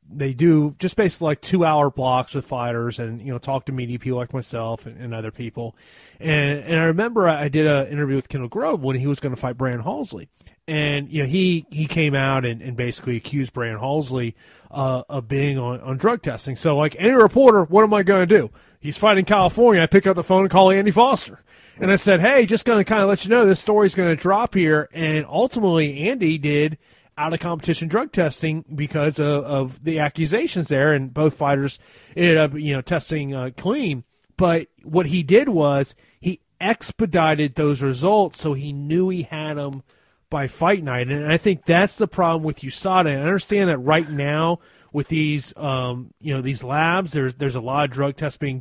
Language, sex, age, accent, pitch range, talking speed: English, male, 30-49, American, 135-180 Hz, 210 wpm